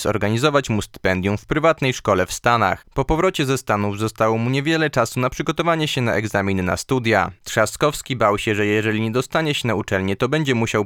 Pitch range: 105-130 Hz